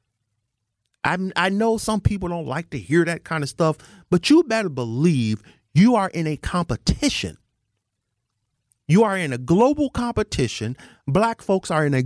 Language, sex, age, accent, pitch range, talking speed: English, male, 40-59, American, 115-175 Hz, 160 wpm